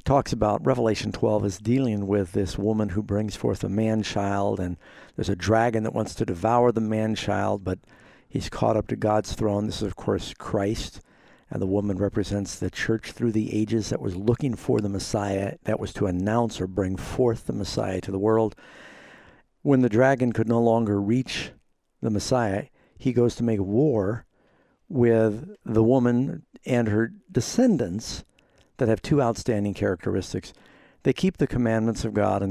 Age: 60-79